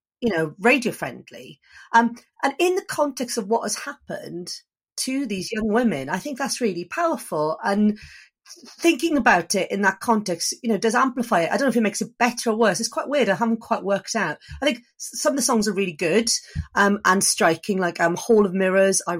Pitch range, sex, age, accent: 190-235 Hz, female, 40-59, British